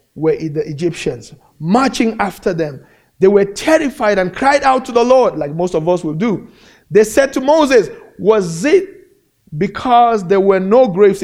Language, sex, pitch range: English, male, 165-250 Hz